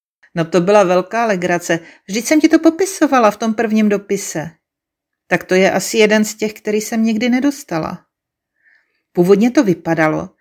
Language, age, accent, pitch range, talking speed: Czech, 40-59, native, 180-240 Hz, 160 wpm